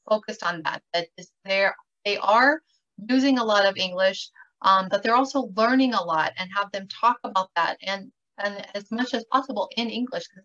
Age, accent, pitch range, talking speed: 30-49, American, 190-245 Hz, 190 wpm